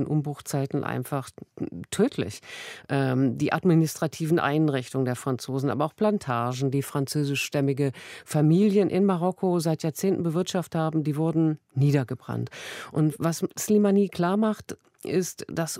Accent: German